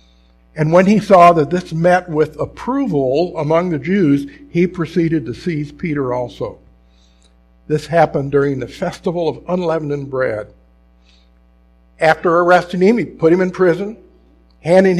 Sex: male